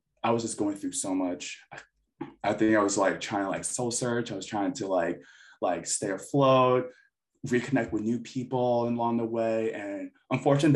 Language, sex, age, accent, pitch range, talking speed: English, male, 20-39, American, 100-135 Hz, 190 wpm